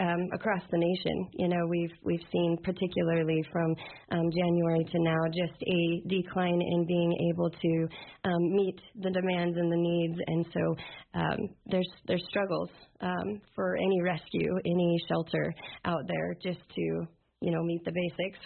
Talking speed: 165 wpm